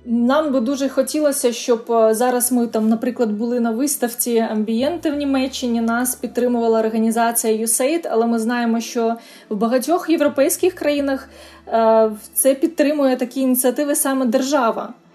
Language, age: Ukrainian, 20-39